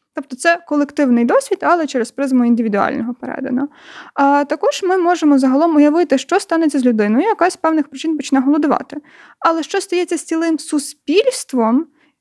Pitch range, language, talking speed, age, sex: 250-310 Hz, Ukrainian, 150 wpm, 20-39, female